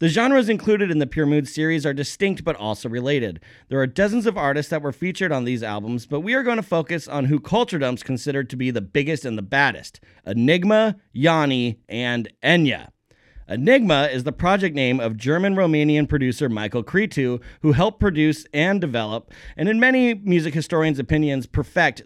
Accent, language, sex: American, English, male